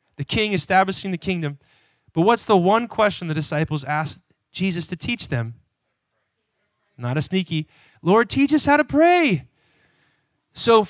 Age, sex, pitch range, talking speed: 30-49, male, 140-190 Hz, 150 wpm